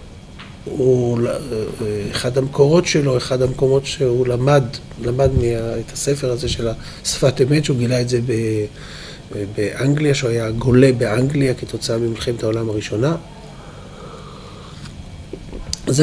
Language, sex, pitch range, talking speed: Hebrew, male, 125-170 Hz, 115 wpm